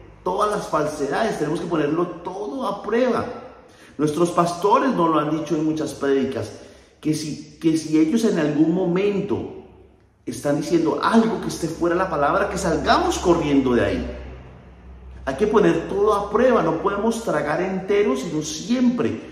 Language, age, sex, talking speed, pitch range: Spanish, 40-59, male, 155 wpm, 115-185 Hz